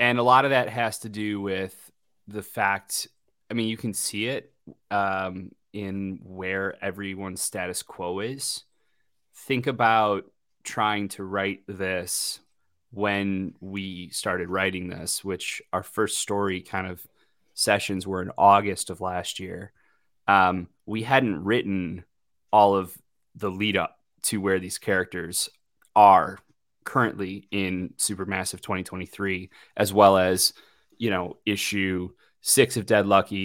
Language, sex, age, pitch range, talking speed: English, male, 20-39, 95-105 Hz, 135 wpm